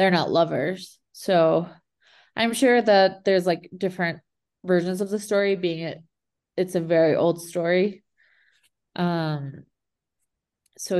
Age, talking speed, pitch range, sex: 20-39, 125 wpm, 165-185 Hz, female